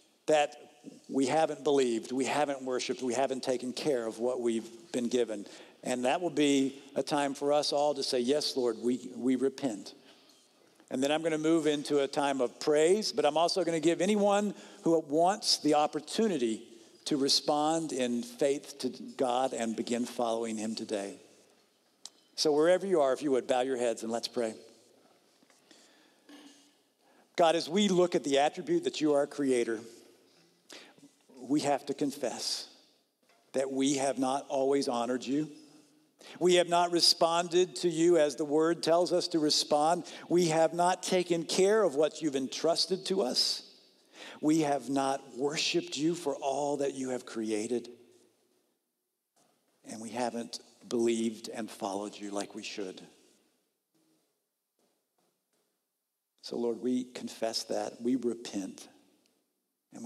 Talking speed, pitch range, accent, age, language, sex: 155 wpm, 125-165 Hz, American, 50-69, English, male